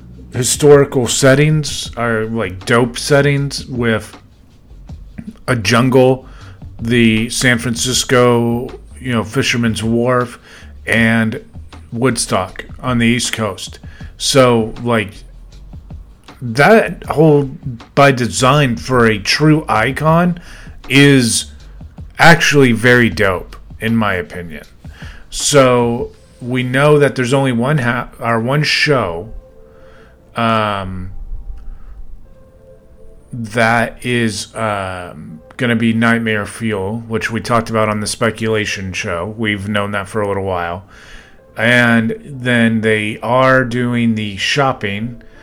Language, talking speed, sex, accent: English, 105 wpm, male, American